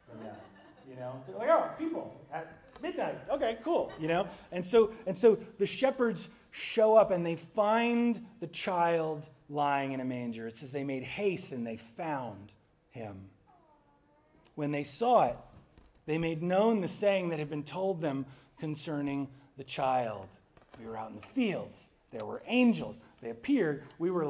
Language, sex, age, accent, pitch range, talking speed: English, male, 40-59, American, 135-220 Hz, 170 wpm